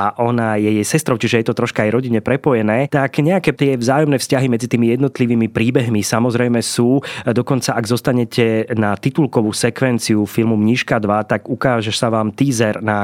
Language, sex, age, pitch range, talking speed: Slovak, male, 30-49, 105-125 Hz, 175 wpm